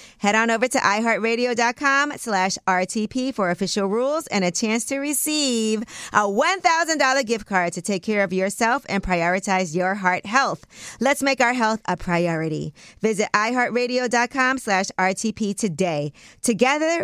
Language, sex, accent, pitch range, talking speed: English, female, American, 190-255 Hz, 145 wpm